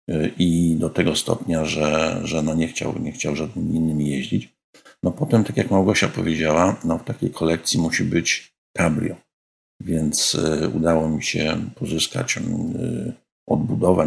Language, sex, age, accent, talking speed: Polish, male, 50-69, native, 140 wpm